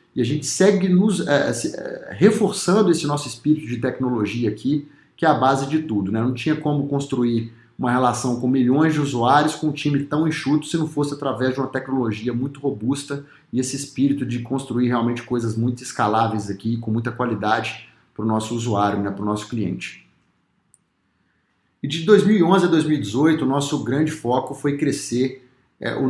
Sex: male